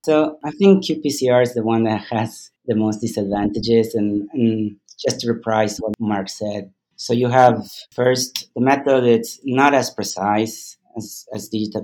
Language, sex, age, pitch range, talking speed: English, male, 30-49, 95-115 Hz, 165 wpm